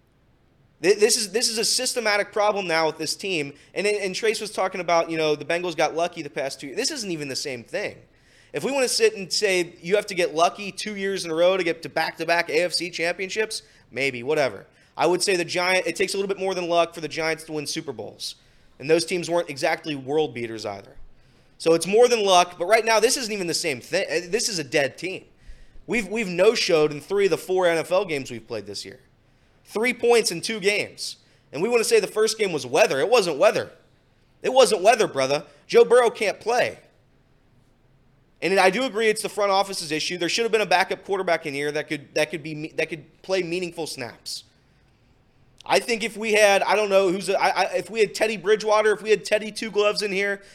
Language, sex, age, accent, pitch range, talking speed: English, male, 20-39, American, 150-210 Hz, 235 wpm